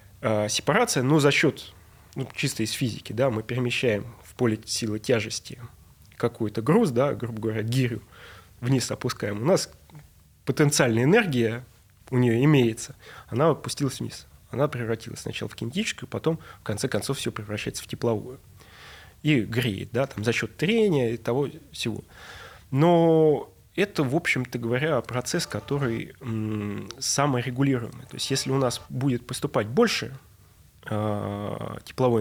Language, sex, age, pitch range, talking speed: Russian, male, 20-39, 110-140 Hz, 135 wpm